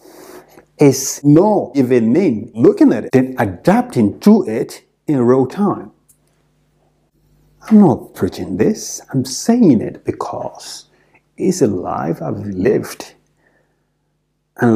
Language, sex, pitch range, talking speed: English, male, 135-220 Hz, 115 wpm